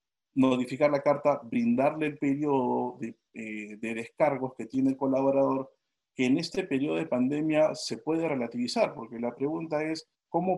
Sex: male